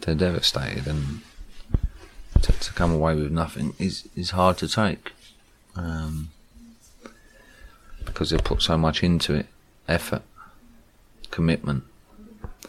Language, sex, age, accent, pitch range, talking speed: English, male, 40-59, British, 75-90 Hz, 115 wpm